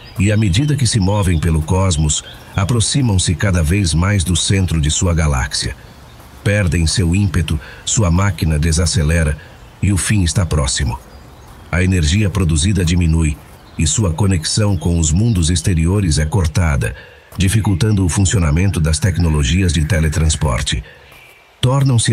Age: 50-69